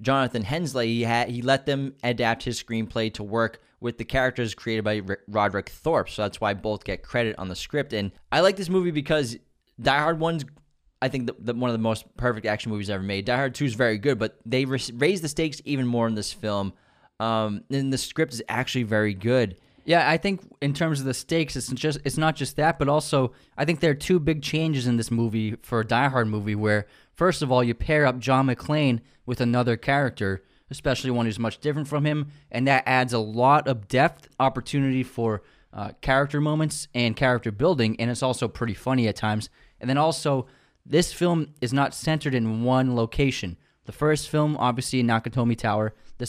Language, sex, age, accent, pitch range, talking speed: English, male, 20-39, American, 115-140 Hz, 215 wpm